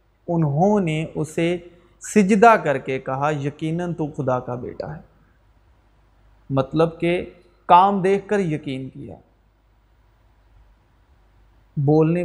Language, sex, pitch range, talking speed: Urdu, male, 130-185 Hz, 105 wpm